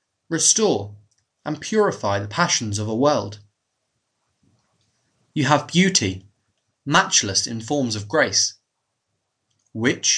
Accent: British